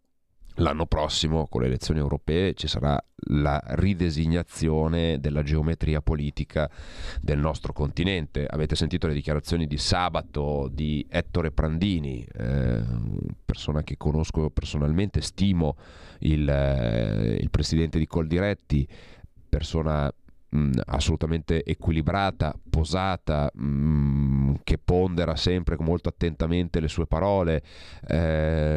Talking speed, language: 110 wpm, Italian